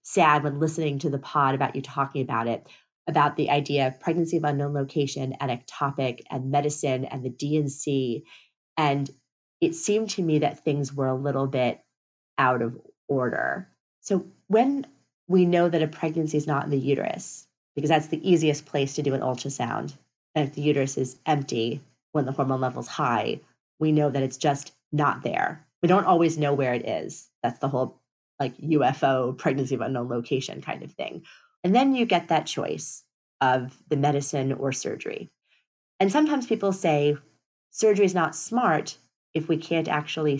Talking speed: 180 wpm